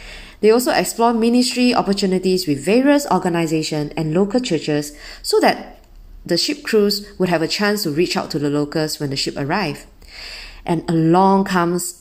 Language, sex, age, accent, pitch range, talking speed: English, female, 20-39, Malaysian, 150-195 Hz, 165 wpm